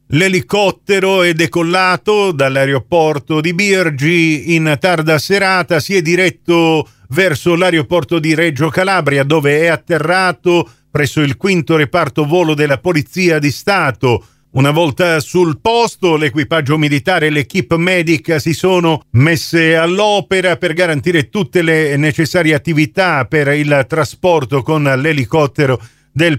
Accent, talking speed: native, 125 wpm